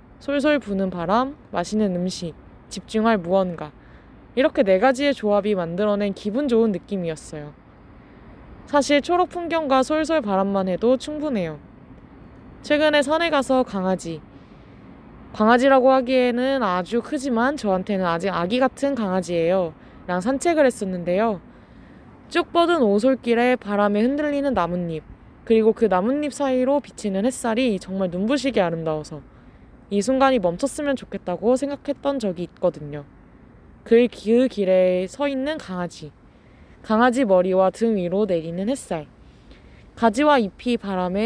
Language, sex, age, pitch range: Korean, female, 20-39, 185-265 Hz